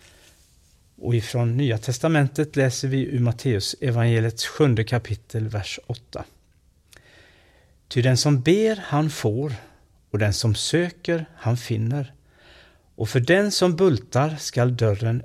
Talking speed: 120 wpm